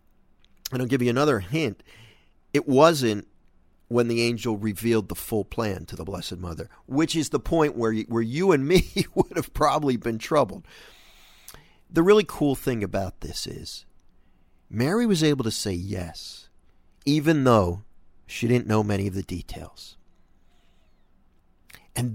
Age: 50-69